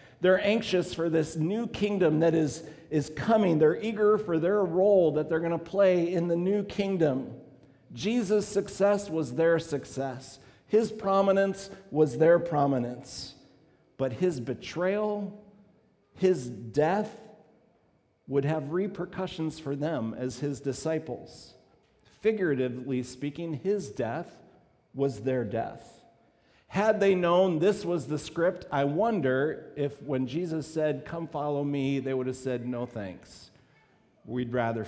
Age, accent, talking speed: 50-69, American, 135 wpm